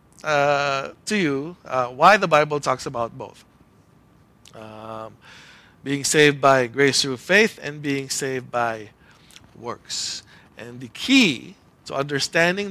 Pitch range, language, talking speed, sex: 135-180 Hz, English, 125 wpm, male